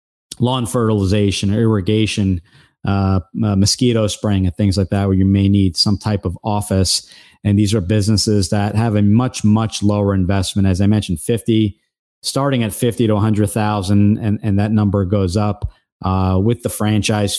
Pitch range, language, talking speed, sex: 100-110 Hz, English, 175 wpm, male